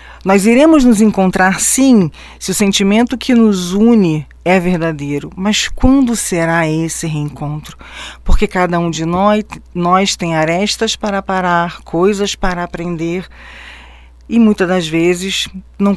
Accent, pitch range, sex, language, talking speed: Brazilian, 155-205 Hz, female, Portuguese, 135 wpm